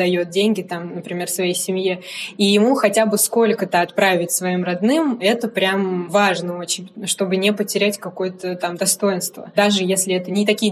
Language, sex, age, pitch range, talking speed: Russian, female, 20-39, 185-210 Hz, 160 wpm